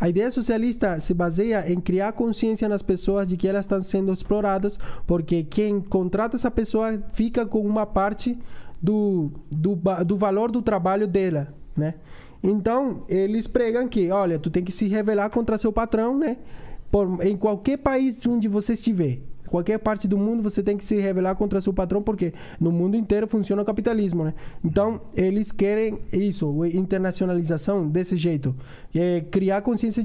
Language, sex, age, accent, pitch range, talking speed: Portuguese, male, 20-39, Brazilian, 180-225 Hz, 165 wpm